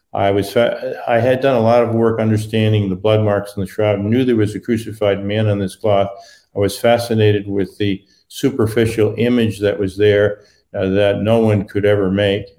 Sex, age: male, 50-69